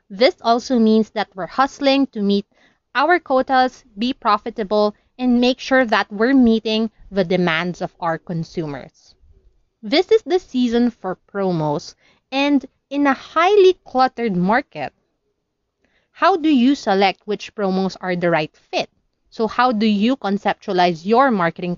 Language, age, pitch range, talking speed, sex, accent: English, 20-39, 185-255 Hz, 145 wpm, female, Filipino